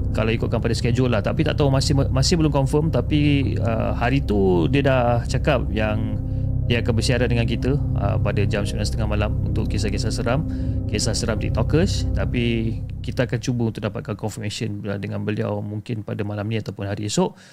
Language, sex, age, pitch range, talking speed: Malay, male, 30-49, 105-140 Hz, 180 wpm